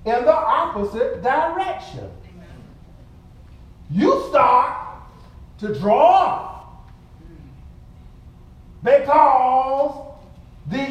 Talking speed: 60 wpm